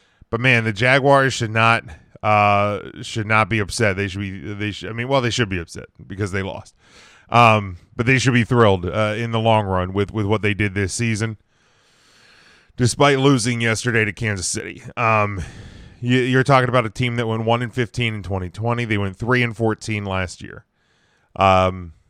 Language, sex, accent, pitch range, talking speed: English, male, American, 100-120 Hz, 200 wpm